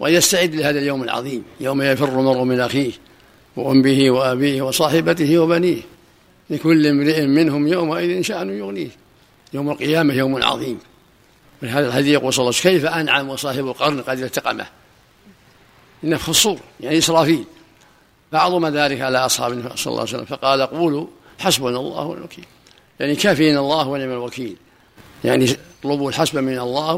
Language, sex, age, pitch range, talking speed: Arabic, male, 50-69, 130-160 Hz, 145 wpm